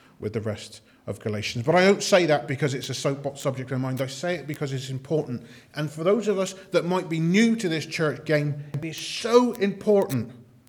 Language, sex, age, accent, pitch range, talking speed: English, male, 40-59, British, 120-165 Hz, 225 wpm